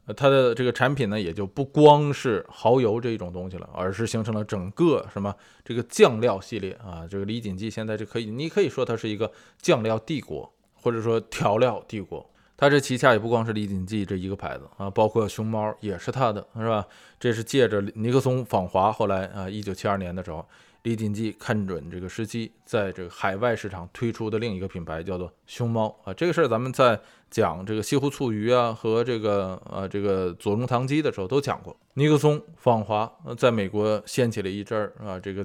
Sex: male